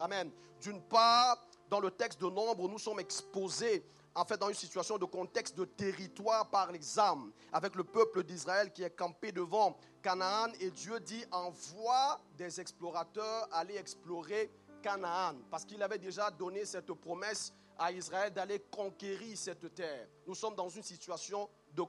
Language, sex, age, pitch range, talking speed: French, male, 40-59, 180-235 Hz, 160 wpm